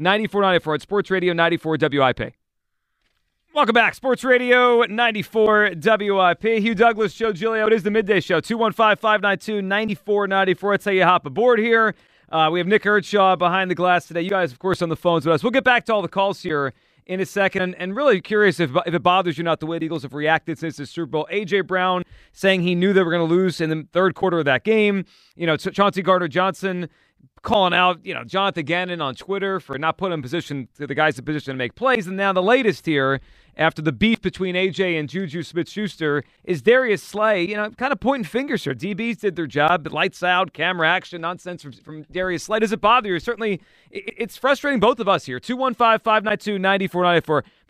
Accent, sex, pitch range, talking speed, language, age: American, male, 160-210 Hz, 210 wpm, English, 30-49